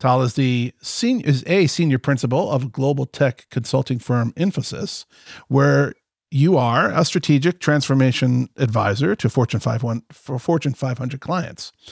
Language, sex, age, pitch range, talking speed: English, male, 40-59, 125-155 Hz, 135 wpm